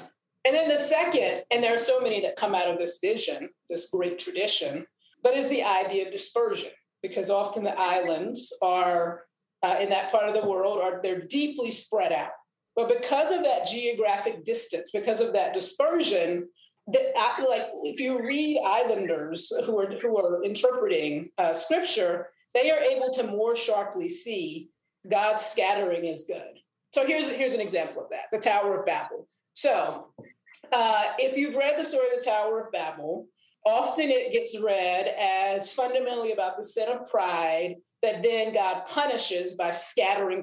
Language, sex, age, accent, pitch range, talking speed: English, female, 40-59, American, 185-290 Hz, 170 wpm